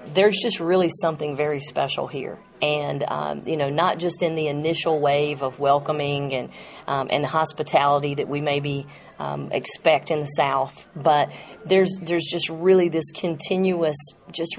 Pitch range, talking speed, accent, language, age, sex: 145-165 Hz, 160 wpm, American, English, 40-59, female